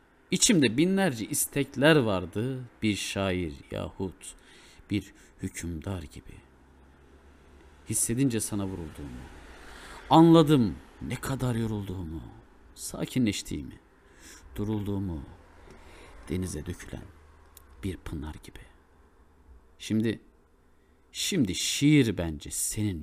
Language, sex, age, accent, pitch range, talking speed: Turkish, male, 50-69, native, 80-120 Hz, 75 wpm